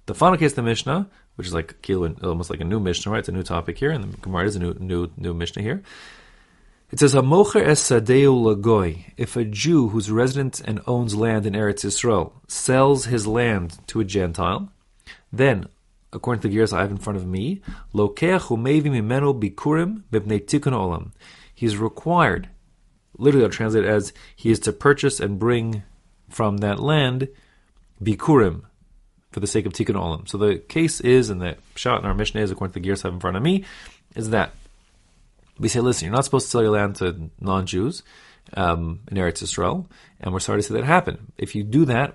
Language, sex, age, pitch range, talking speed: English, male, 30-49, 95-125 Hz, 190 wpm